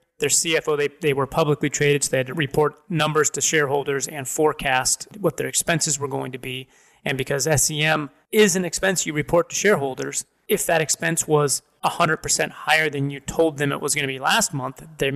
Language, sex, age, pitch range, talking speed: English, male, 30-49, 145-170 Hz, 205 wpm